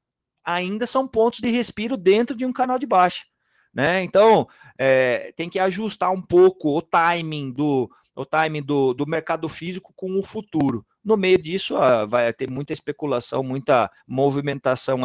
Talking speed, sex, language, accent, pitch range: 165 wpm, male, Portuguese, Brazilian, 145-185 Hz